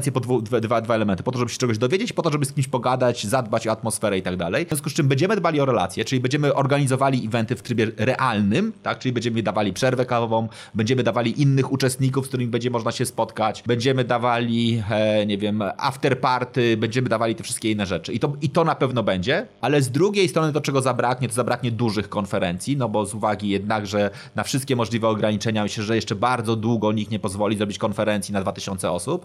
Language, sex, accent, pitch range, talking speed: Polish, male, native, 110-140 Hz, 220 wpm